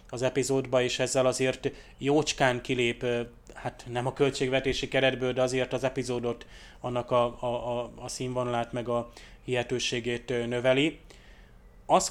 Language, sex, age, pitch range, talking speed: Hungarian, male, 30-49, 120-140 Hz, 130 wpm